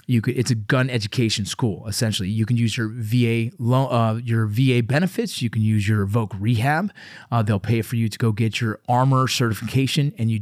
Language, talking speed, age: English, 215 wpm, 30-49